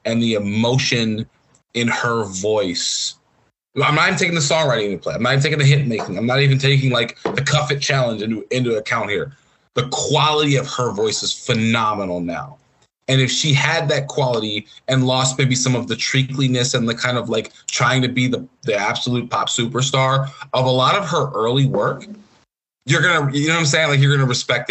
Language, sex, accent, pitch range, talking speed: English, male, American, 120-145 Hz, 210 wpm